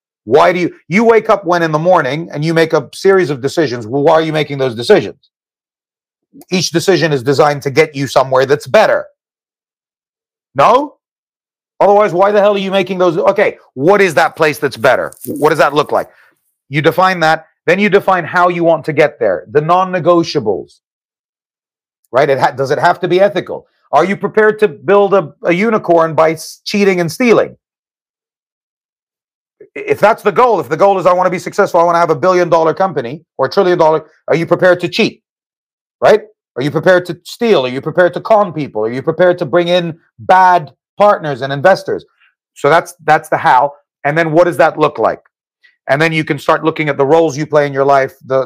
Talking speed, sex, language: 205 wpm, male, English